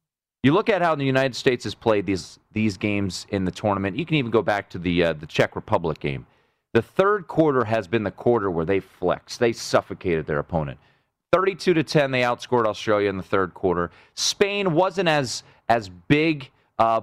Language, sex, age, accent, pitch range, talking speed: English, male, 30-49, American, 100-140 Hz, 200 wpm